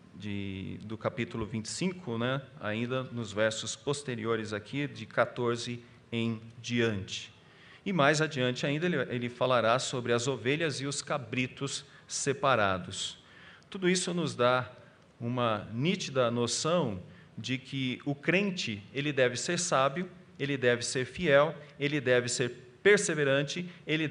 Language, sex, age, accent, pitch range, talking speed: Portuguese, male, 40-59, Brazilian, 120-150 Hz, 125 wpm